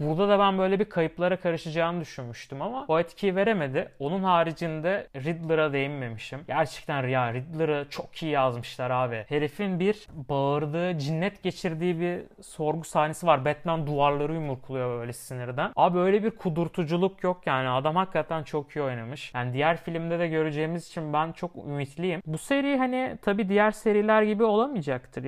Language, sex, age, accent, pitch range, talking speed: Turkish, male, 30-49, native, 130-175 Hz, 155 wpm